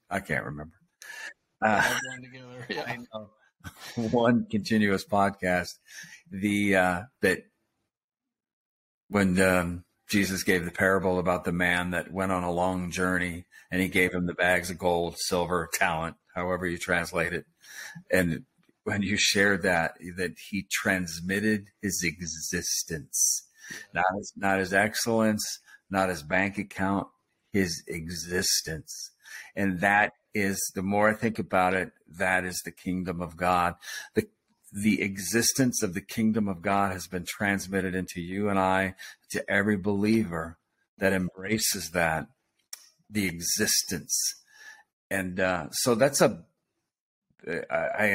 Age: 50-69